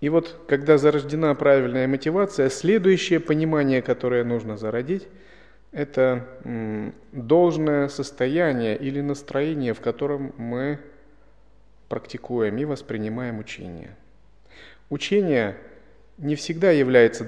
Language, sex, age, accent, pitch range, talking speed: Russian, male, 30-49, native, 115-150 Hz, 95 wpm